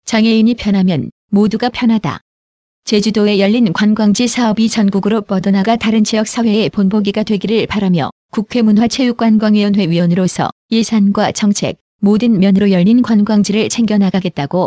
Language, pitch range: Korean, 195-225 Hz